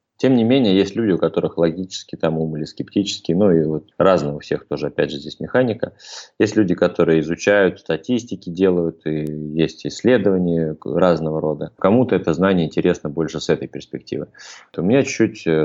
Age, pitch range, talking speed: 20-39, 80-95 Hz, 175 wpm